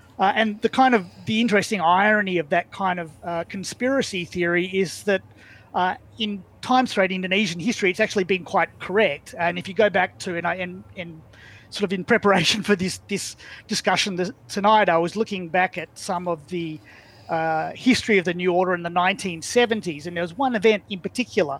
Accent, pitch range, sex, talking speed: Australian, 170-205 Hz, male, 205 wpm